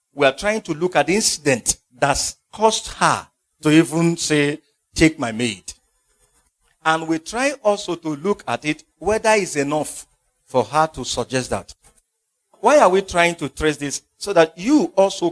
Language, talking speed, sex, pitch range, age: English, 175 wpm, male, 130-195 Hz, 50-69